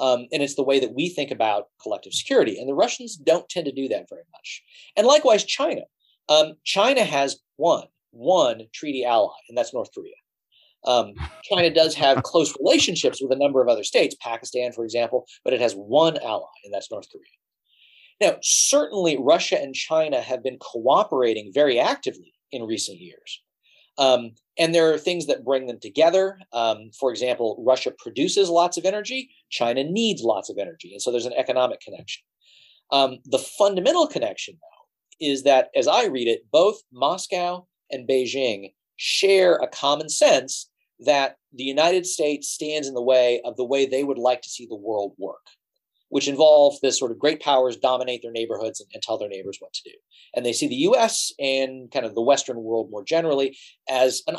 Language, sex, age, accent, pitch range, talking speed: English, male, 40-59, American, 125-180 Hz, 190 wpm